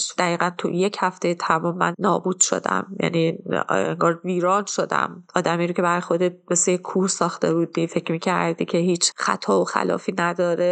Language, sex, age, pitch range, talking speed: Persian, female, 30-49, 180-215 Hz, 155 wpm